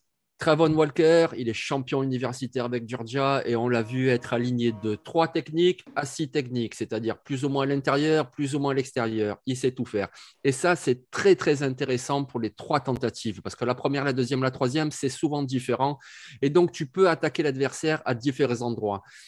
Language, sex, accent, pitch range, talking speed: French, male, French, 125-155 Hz, 200 wpm